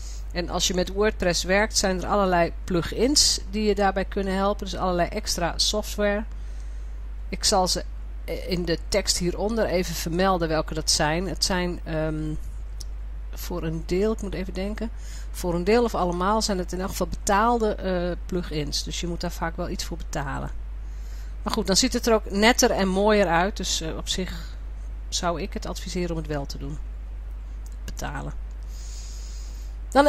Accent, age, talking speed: Dutch, 40-59, 175 wpm